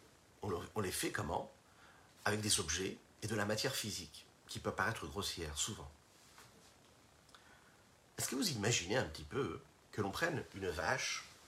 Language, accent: French, French